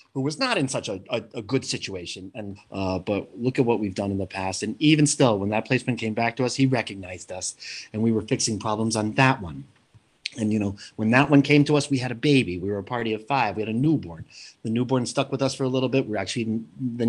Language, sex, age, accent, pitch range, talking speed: English, male, 30-49, American, 105-130 Hz, 275 wpm